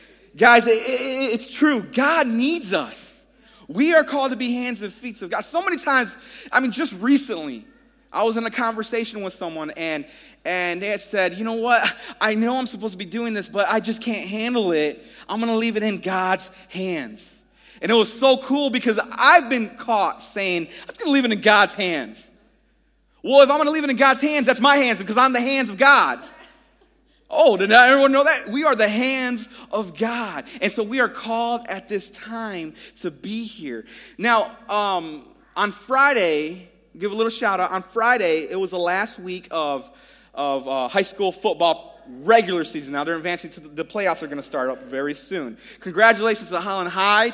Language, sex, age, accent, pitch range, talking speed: English, male, 30-49, American, 190-255 Hz, 210 wpm